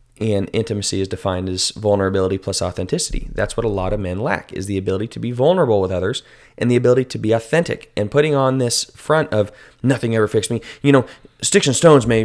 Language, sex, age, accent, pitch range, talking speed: English, male, 20-39, American, 105-135 Hz, 220 wpm